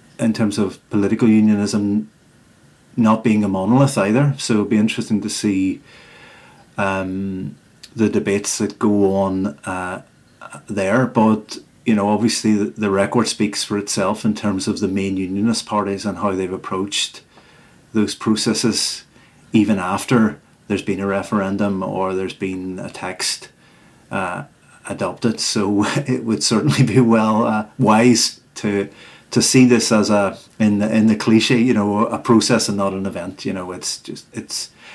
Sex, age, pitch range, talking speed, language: male, 30-49, 95-110 Hz, 160 wpm, English